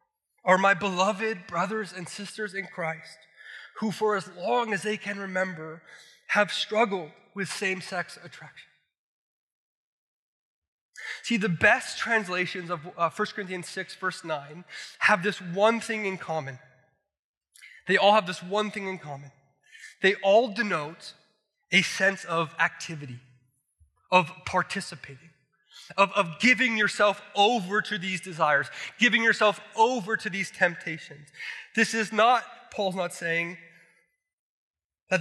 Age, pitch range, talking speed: 20-39, 175-220 Hz, 130 wpm